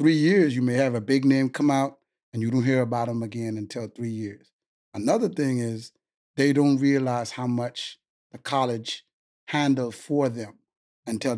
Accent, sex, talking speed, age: American, male, 180 wpm, 30-49